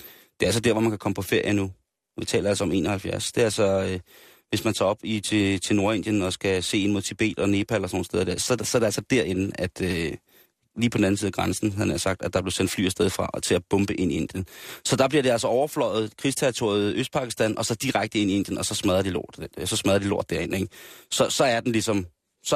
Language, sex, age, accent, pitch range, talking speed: Danish, male, 30-49, native, 95-115 Hz, 280 wpm